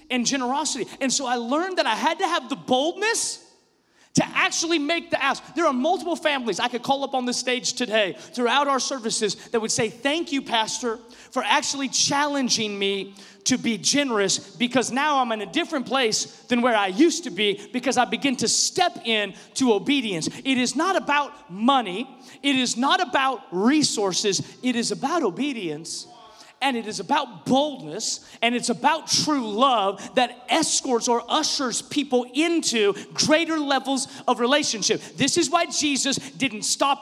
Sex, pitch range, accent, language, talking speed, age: male, 210-280 Hz, American, English, 175 wpm, 30-49